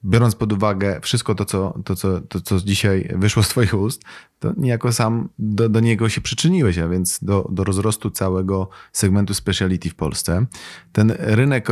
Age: 30-49